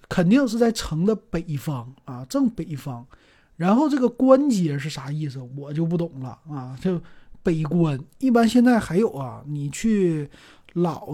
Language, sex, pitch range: Chinese, male, 145-195 Hz